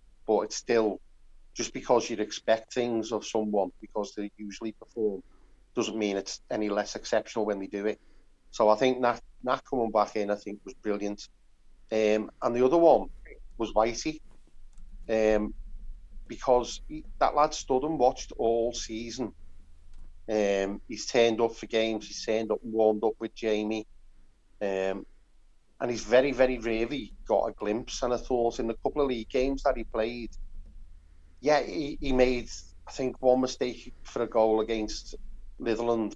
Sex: male